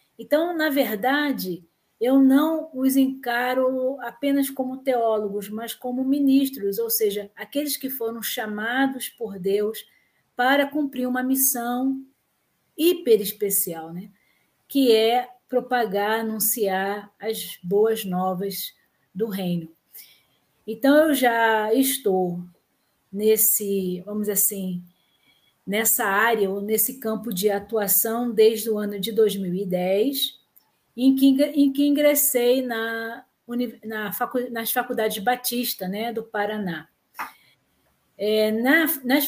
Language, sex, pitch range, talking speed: Portuguese, female, 205-255 Hz, 100 wpm